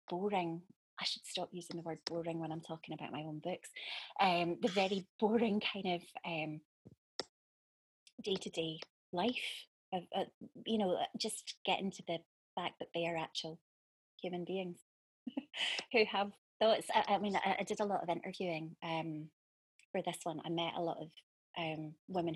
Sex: female